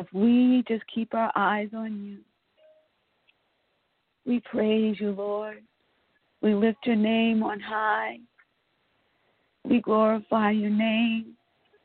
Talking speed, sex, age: 110 wpm, female, 50-69